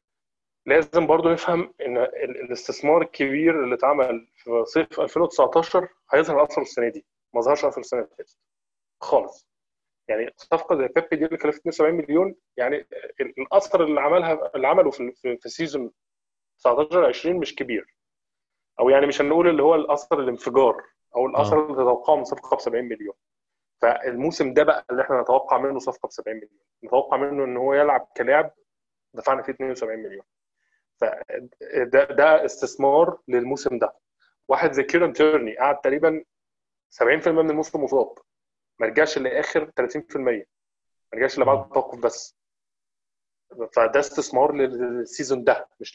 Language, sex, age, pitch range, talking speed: Arabic, male, 20-39, 135-165 Hz, 145 wpm